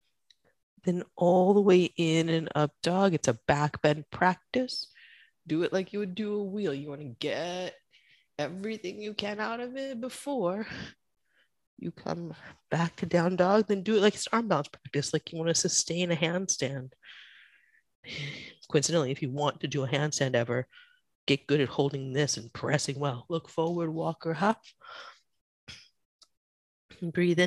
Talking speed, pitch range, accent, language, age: 160 wpm, 145-205 Hz, American, English, 30-49